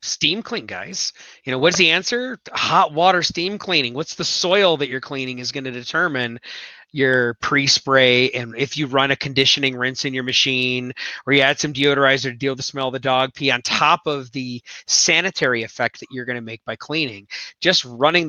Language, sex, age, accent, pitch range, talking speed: English, male, 30-49, American, 125-145 Hz, 205 wpm